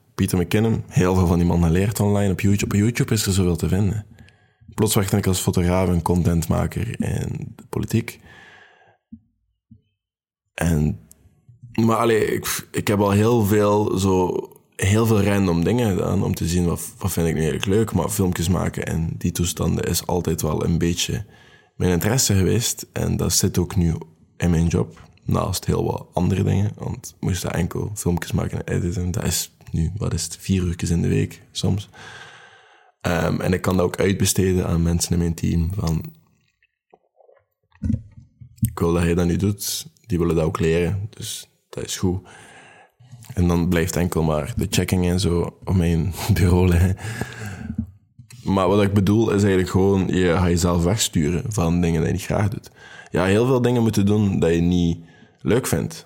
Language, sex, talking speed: Dutch, male, 185 wpm